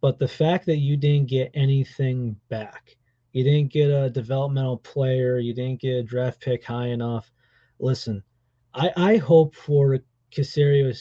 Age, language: 30-49, English